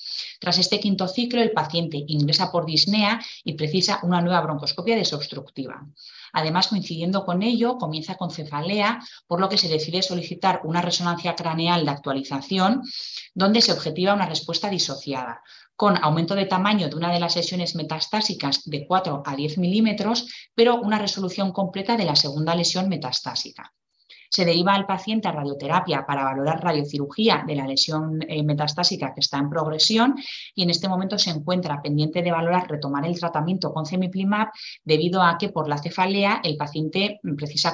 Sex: female